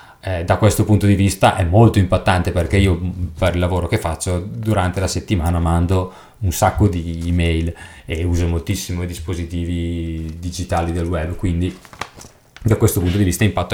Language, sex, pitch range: Italian, male, 90-115 Hz